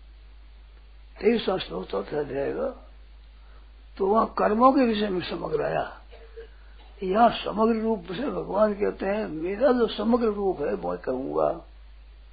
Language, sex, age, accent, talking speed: Hindi, male, 60-79, native, 125 wpm